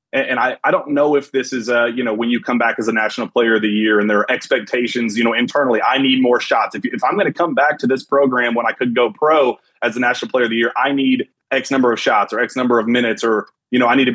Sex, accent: male, American